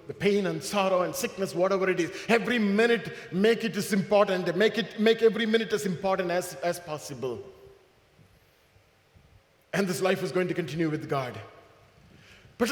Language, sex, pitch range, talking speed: English, male, 195-290 Hz, 165 wpm